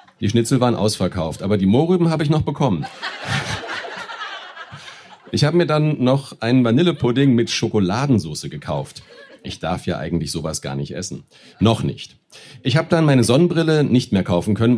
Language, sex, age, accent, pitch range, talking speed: German, male, 40-59, German, 105-145 Hz, 160 wpm